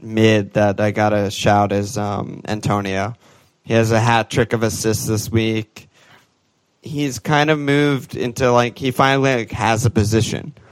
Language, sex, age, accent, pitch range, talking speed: English, male, 20-39, American, 105-120 Hz, 160 wpm